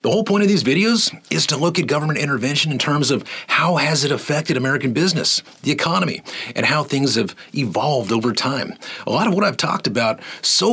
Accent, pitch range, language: American, 130-175 Hz, English